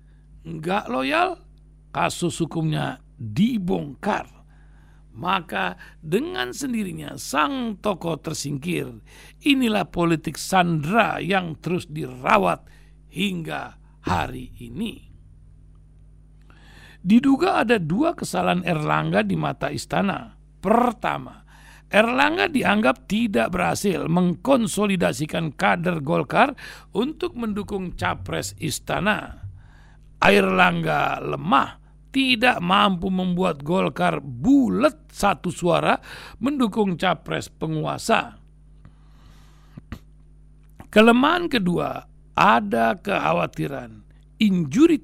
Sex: male